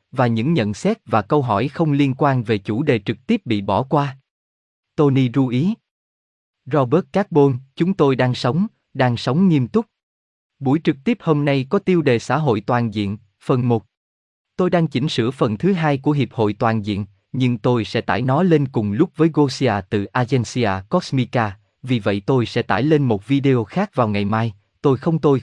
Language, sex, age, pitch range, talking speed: Vietnamese, male, 20-39, 110-150 Hz, 200 wpm